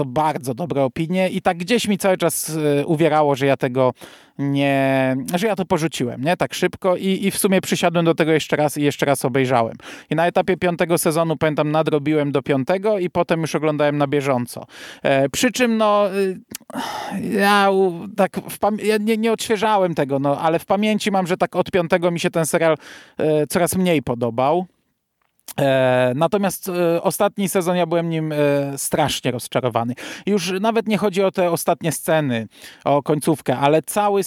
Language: Polish